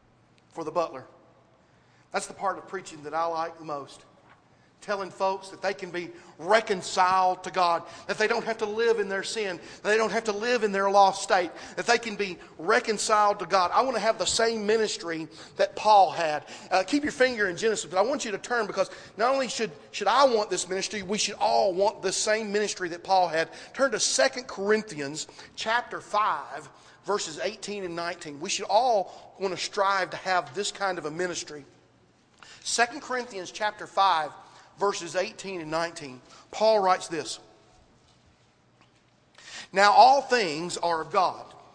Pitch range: 175-220 Hz